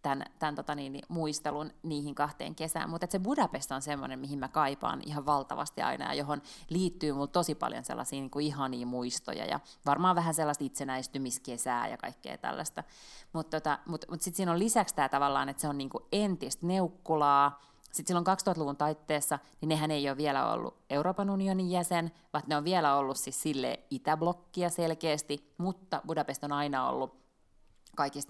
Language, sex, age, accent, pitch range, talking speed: Finnish, female, 20-39, native, 140-170 Hz, 170 wpm